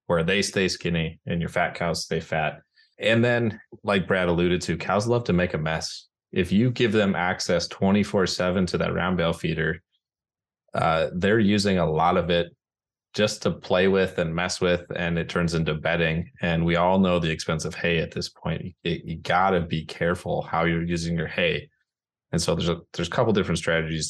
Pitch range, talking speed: 80-90 Hz, 205 wpm